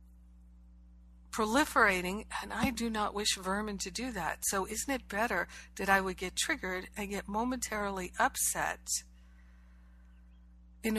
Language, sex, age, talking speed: English, female, 60-79, 130 wpm